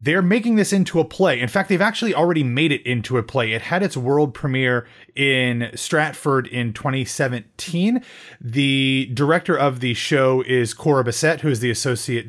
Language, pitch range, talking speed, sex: English, 125-175 Hz, 180 wpm, male